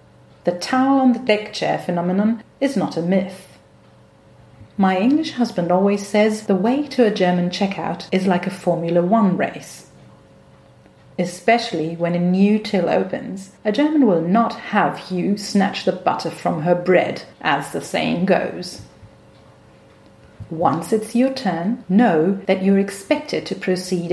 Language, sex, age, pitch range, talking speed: German, female, 40-59, 175-220 Hz, 140 wpm